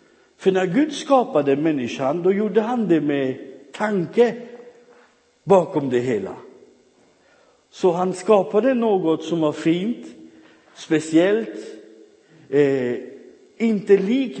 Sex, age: male, 50-69